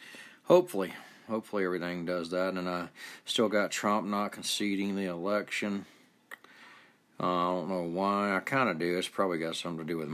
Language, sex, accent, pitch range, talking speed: English, male, American, 85-95 Hz, 185 wpm